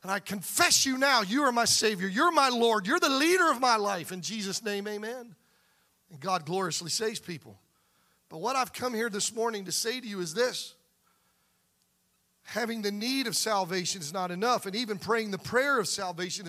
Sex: male